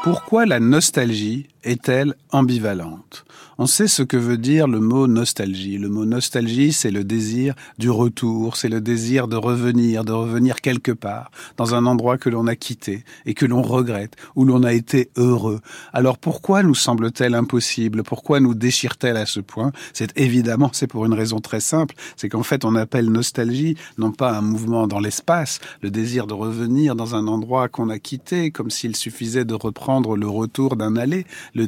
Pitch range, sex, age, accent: 115-135 Hz, male, 40-59, French